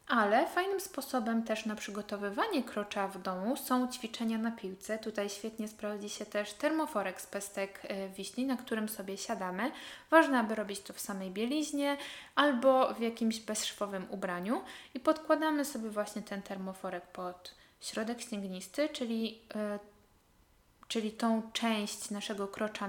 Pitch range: 195-245 Hz